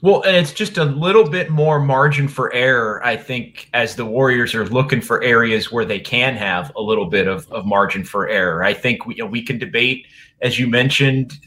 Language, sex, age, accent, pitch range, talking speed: English, male, 30-49, American, 120-145 Hz, 225 wpm